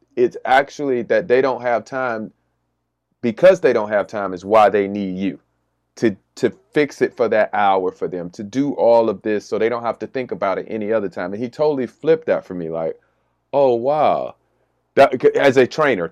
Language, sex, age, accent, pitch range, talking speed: English, male, 30-49, American, 100-140 Hz, 210 wpm